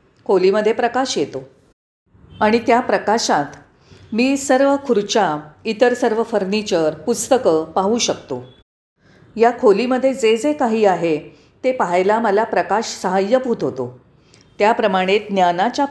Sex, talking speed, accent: female, 110 wpm, native